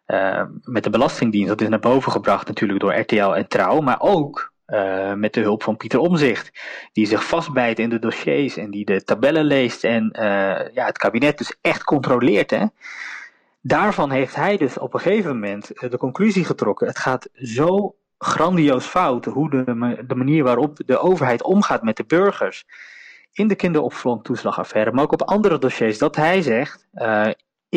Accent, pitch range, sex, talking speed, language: Dutch, 110-150 Hz, male, 175 wpm, Dutch